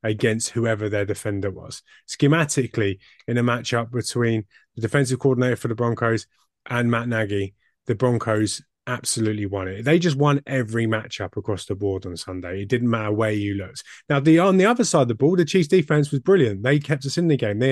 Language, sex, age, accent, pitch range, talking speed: English, male, 20-39, British, 105-135 Hz, 205 wpm